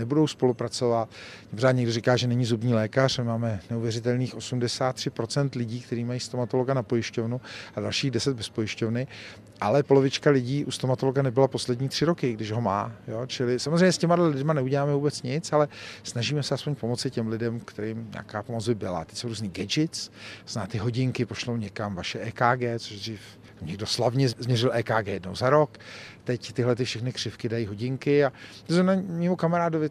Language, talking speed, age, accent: Czech, 175 wpm, 50-69, native